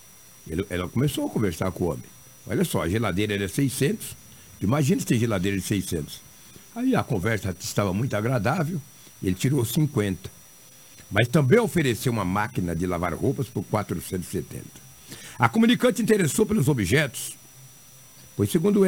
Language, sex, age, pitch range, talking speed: Portuguese, male, 60-79, 95-135 Hz, 145 wpm